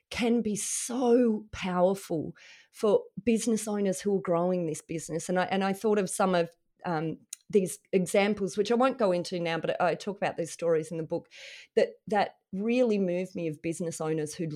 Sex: female